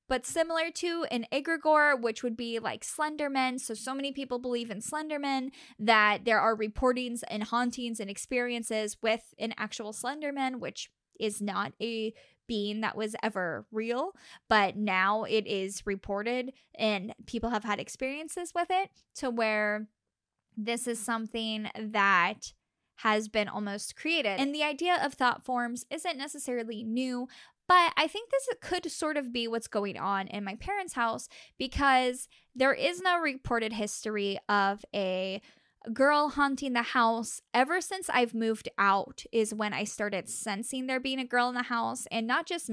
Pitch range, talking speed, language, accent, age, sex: 210-270 Hz, 165 wpm, English, American, 10-29, female